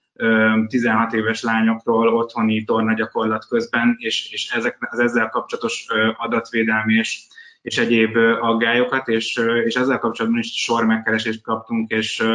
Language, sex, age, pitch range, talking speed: Hungarian, male, 20-39, 110-120 Hz, 130 wpm